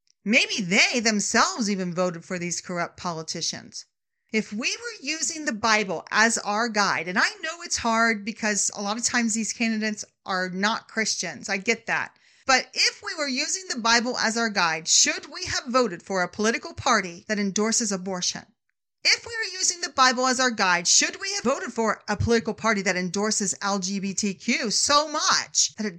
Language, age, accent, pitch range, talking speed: English, 40-59, American, 195-260 Hz, 185 wpm